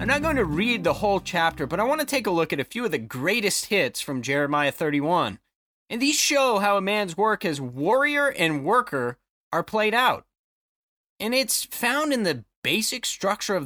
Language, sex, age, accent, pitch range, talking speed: English, male, 30-49, American, 155-235 Hz, 205 wpm